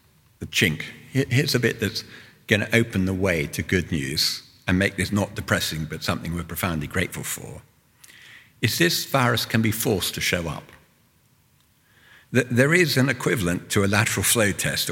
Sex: male